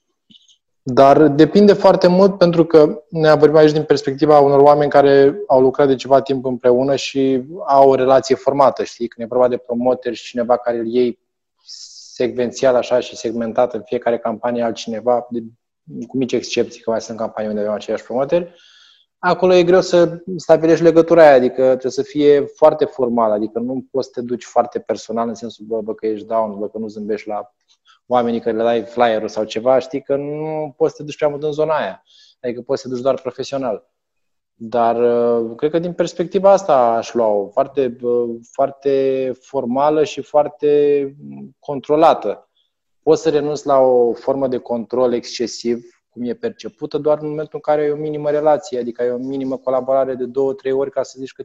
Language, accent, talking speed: Romanian, native, 190 wpm